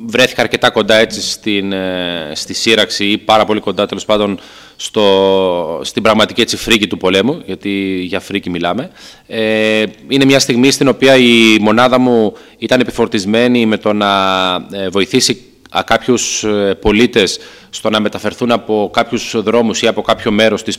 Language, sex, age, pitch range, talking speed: Greek, male, 30-49, 105-135 Hz, 205 wpm